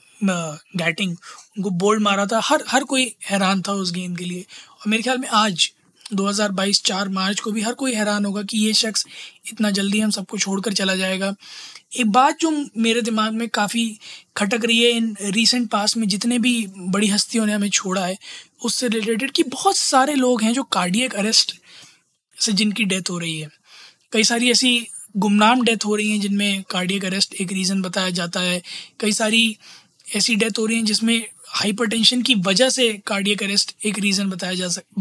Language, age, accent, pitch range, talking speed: Hindi, 20-39, native, 195-235 Hz, 190 wpm